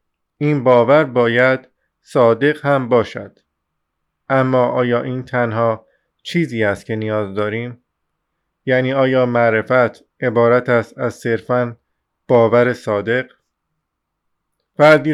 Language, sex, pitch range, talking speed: Persian, male, 110-135 Hz, 100 wpm